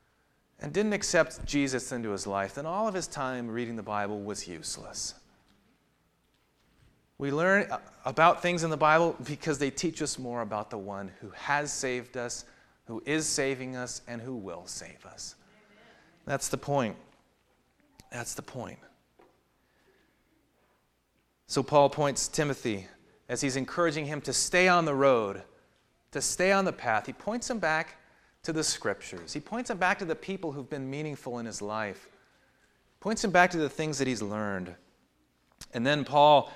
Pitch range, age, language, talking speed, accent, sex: 115-160 Hz, 30-49, English, 165 wpm, American, male